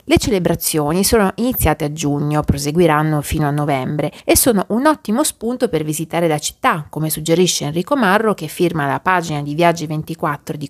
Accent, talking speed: native, 170 wpm